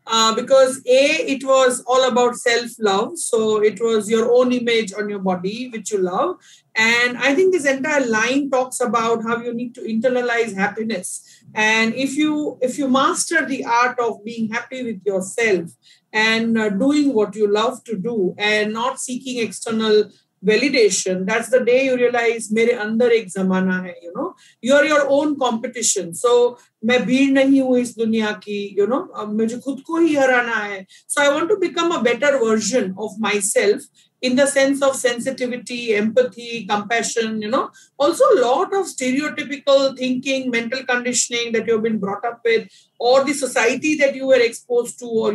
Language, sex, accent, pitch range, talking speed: English, female, Indian, 225-270 Hz, 170 wpm